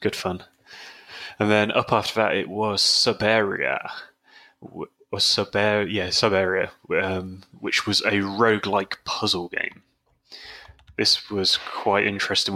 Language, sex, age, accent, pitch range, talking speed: English, male, 20-39, British, 95-105 Hz, 120 wpm